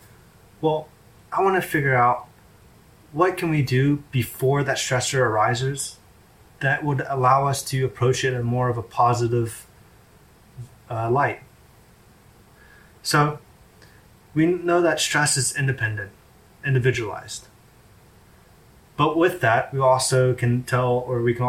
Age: 20-39